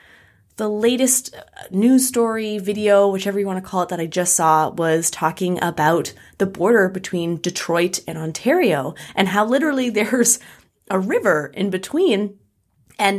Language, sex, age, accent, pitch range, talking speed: English, female, 20-39, American, 170-230 Hz, 150 wpm